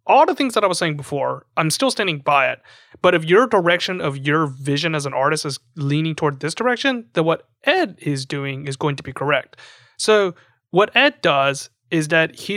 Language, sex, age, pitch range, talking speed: English, male, 30-49, 150-195 Hz, 215 wpm